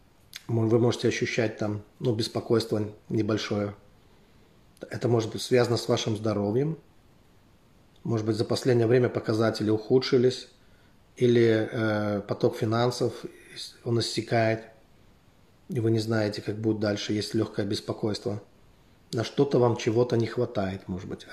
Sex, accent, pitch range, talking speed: male, native, 105-125 Hz, 125 wpm